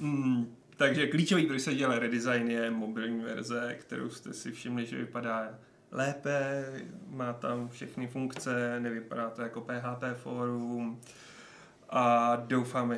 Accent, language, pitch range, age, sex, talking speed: native, Czech, 115-135 Hz, 30-49, male, 130 wpm